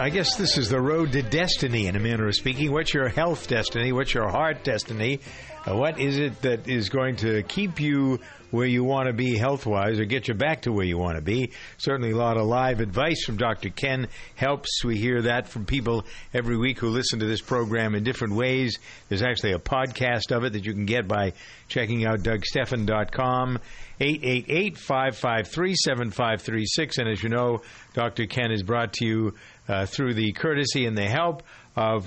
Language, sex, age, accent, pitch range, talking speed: English, male, 50-69, American, 110-135 Hz, 195 wpm